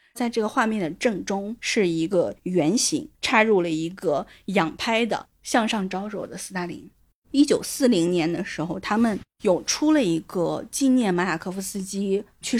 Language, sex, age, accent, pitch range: Chinese, female, 20-39, native, 180-245 Hz